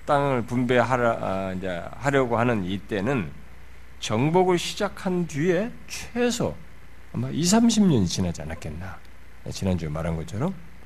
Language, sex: Korean, male